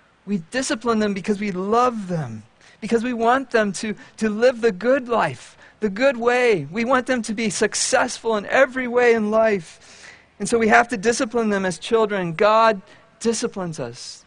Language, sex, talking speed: English, male, 180 wpm